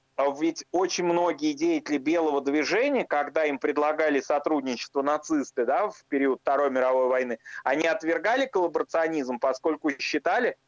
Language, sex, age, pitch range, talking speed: Russian, male, 30-49, 140-175 Hz, 125 wpm